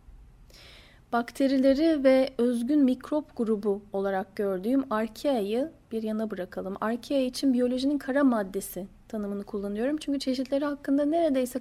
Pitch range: 210-265 Hz